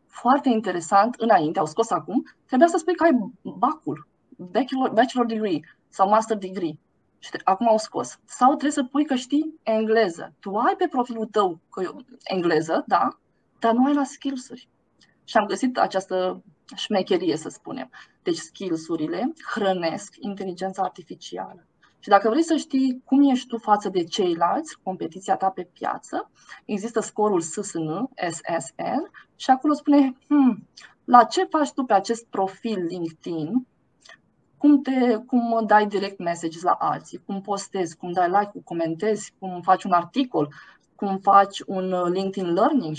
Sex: female